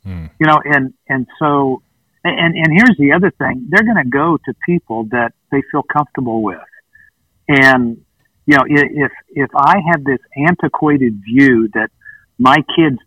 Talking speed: 160 wpm